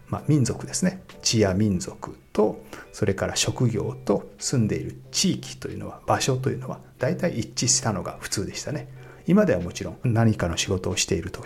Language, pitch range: Japanese, 100-135 Hz